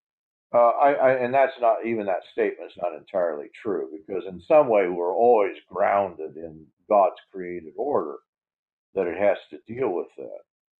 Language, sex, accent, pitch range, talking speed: English, male, American, 105-160 Hz, 165 wpm